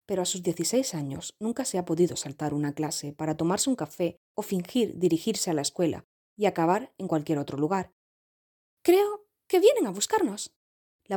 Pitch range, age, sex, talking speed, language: 155-205 Hz, 20-39, female, 185 wpm, Spanish